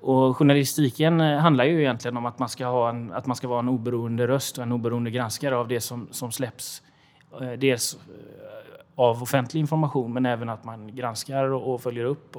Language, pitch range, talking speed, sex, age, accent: Swedish, 115-135 Hz, 195 wpm, male, 30-49, native